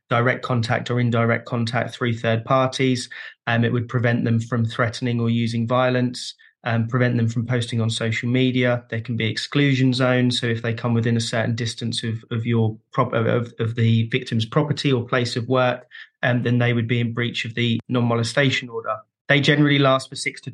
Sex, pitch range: male, 115-130 Hz